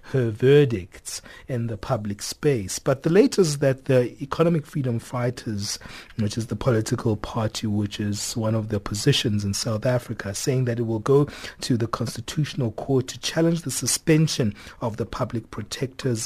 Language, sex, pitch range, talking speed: English, male, 110-130 Hz, 165 wpm